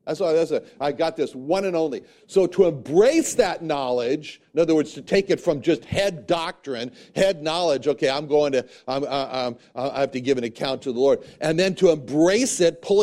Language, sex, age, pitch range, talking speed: English, male, 60-79, 140-200 Hz, 215 wpm